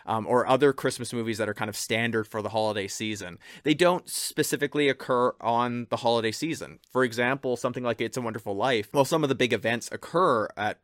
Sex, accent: male, American